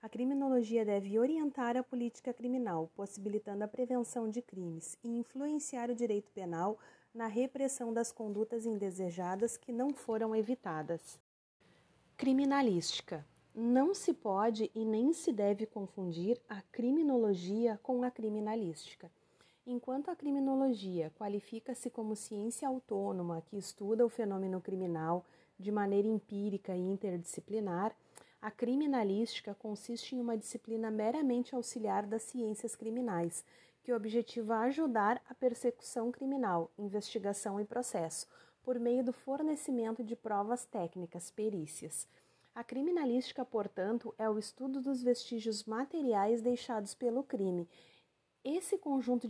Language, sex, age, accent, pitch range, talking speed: Portuguese, female, 40-59, Brazilian, 205-245 Hz, 125 wpm